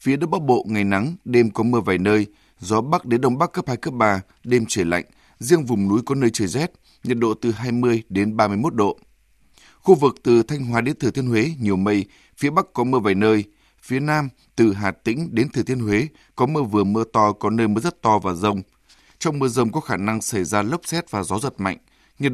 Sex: male